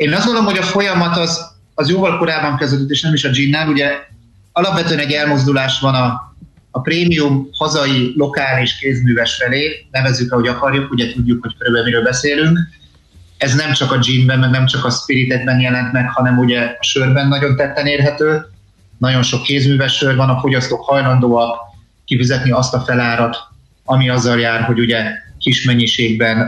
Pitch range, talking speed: 120-145 Hz, 170 wpm